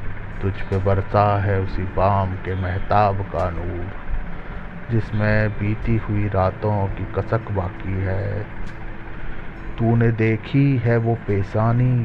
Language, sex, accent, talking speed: Hindi, male, native, 115 wpm